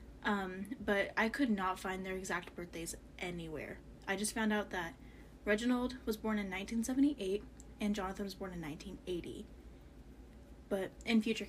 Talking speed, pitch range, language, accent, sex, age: 150 wpm, 195-240 Hz, English, American, female, 10-29